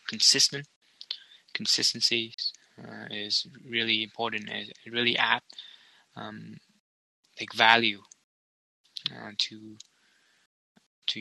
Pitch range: 105-120 Hz